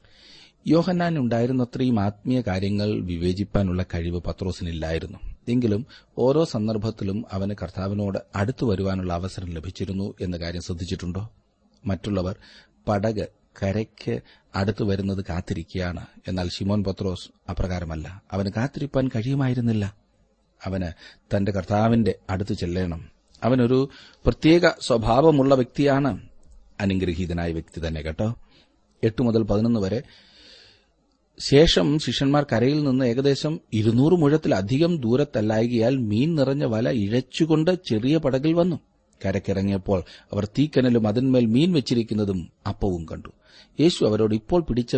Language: Malayalam